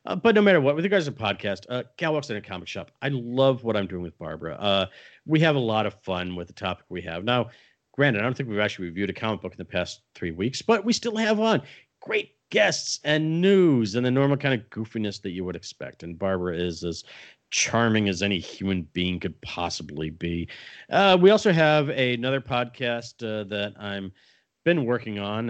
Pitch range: 90-125 Hz